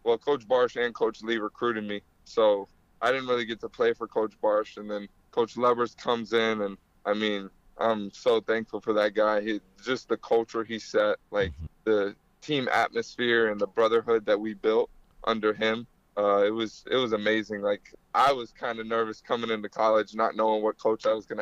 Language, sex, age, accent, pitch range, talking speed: English, male, 20-39, American, 105-120 Hz, 205 wpm